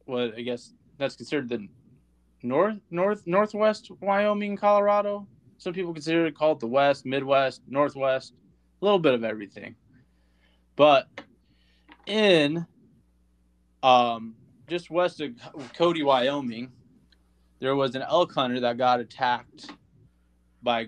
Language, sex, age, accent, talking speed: English, male, 20-39, American, 125 wpm